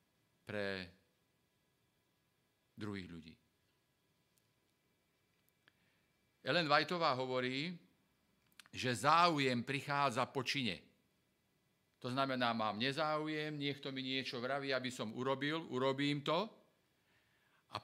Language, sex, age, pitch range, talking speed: Slovak, male, 50-69, 125-150 Hz, 80 wpm